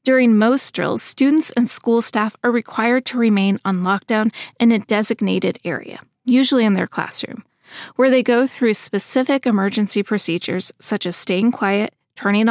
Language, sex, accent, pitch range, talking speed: English, female, American, 200-250 Hz, 160 wpm